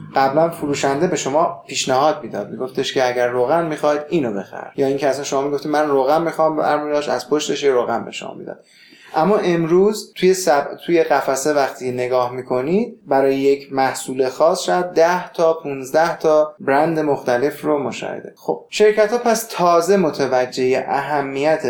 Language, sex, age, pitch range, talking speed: Persian, male, 20-39, 130-180 Hz, 160 wpm